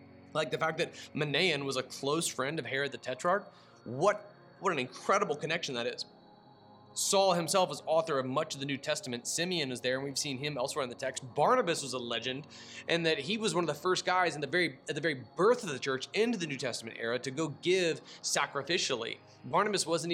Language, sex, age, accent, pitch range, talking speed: English, male, 30-49, American, 130-170 Hz, 225 wpm